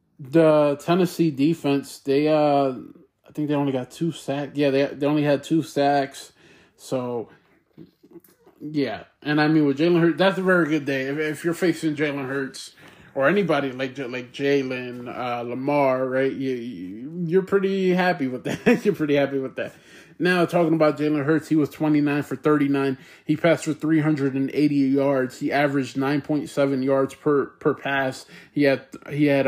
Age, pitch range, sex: 20-39, 135-150 Hz, male